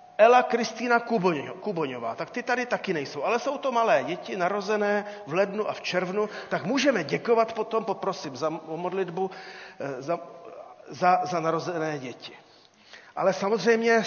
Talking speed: 140 wpm